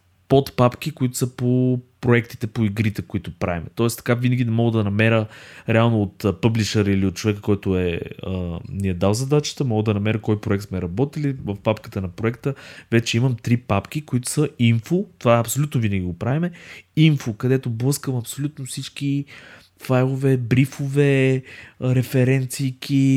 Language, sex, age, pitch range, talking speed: Bulgarian, male, 20-39, 105-135 Hz, 160 wpm